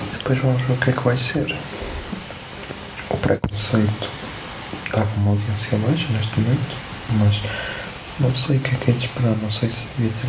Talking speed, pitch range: 190 wpm, 110-130 Hz